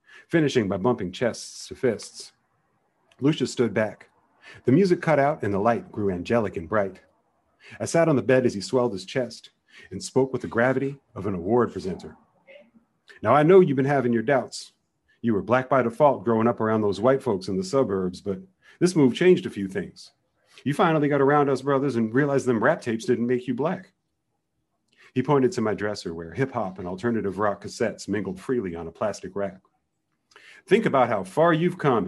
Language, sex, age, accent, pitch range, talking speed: English, male, 40-59, American, 100-140 Hz, 200 wpm